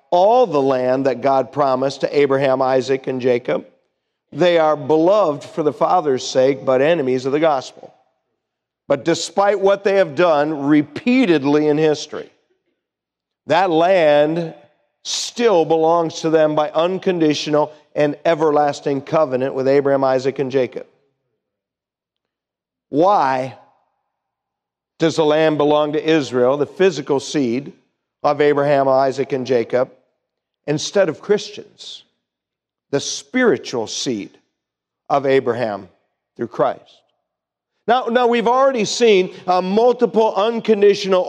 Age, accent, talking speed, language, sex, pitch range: 50-69, American, 120 wpm, English, male, 145-200 Hz